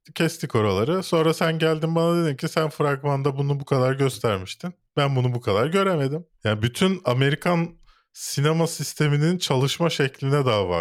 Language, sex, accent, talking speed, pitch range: Turkish, male, native, 150 wpm, 100-140 Hz